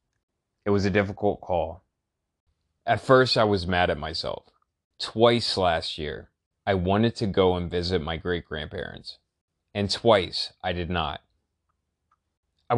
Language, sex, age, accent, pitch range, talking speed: English, male, 30-49, American, 90-110 Hz, 135 wpm